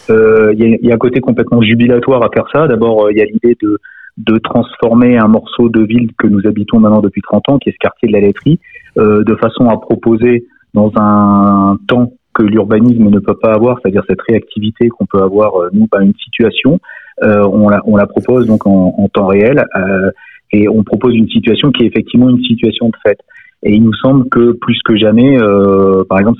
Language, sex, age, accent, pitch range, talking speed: French, male, 30-49, French, 100-120 Hz, 230 wpm